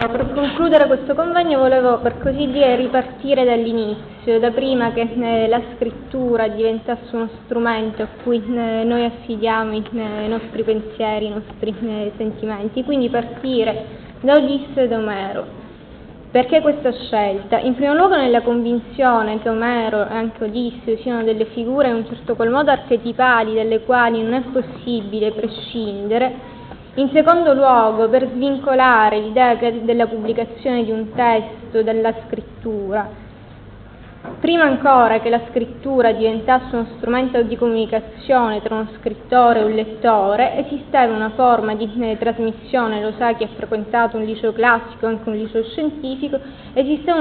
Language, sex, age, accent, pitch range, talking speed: Italian, female, 10-29, native, 220-255 Hz, 140 wpm